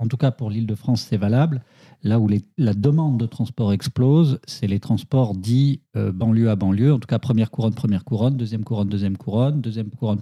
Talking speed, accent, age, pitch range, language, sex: 210 wpm, French, 50-69, 105-130 Hz, French, male